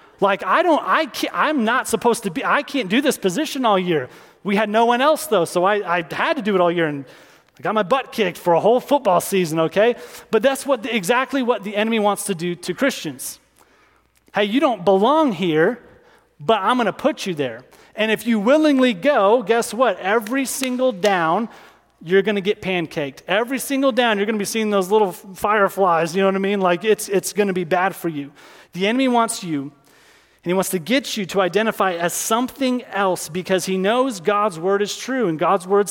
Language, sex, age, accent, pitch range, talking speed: English, male, 30-49, American, 185-245 Hz, 225 wpm